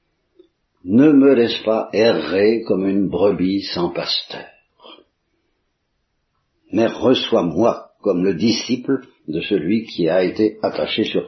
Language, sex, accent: Italian, male, French